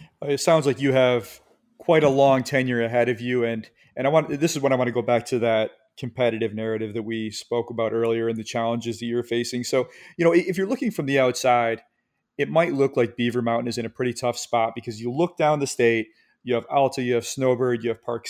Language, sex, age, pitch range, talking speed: English, male, 30-49, 115-130 Hz, 245 wpm